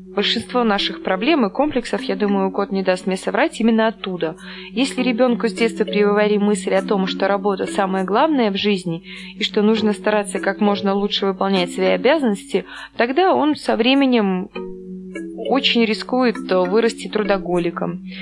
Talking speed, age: 150 wpm, 20-39